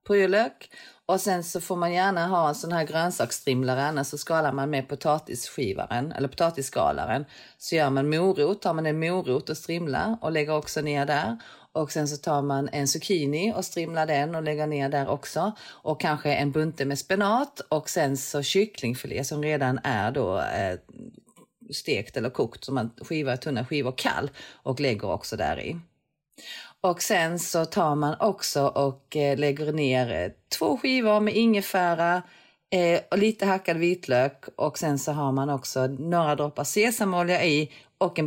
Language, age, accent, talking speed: English, 30-49, Swedish, 165 wpm